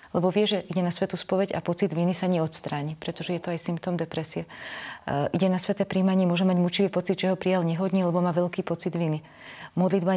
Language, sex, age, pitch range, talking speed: Slovak, female, 30-49, 170-185 Hz, 210 wpm